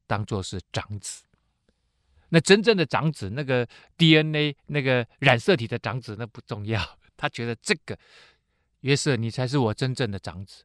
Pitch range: 105-150 Hz